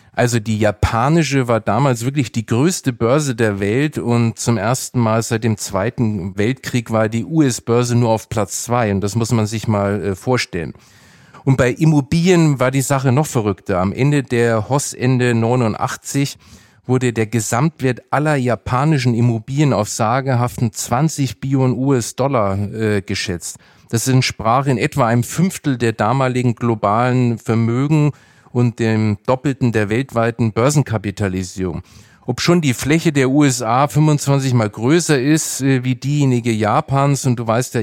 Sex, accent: male, German